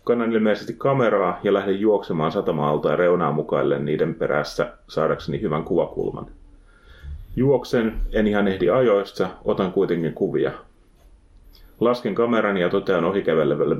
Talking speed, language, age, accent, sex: 120 wpm, Finnish, 30-49, native, male